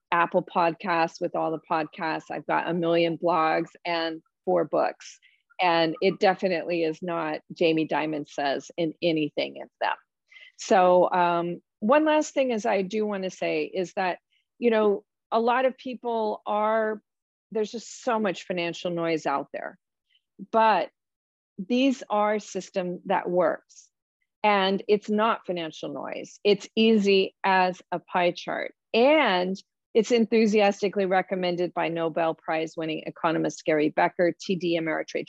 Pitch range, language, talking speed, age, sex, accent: 165-210 Hz, English, 145 wpm, 40-59, female, American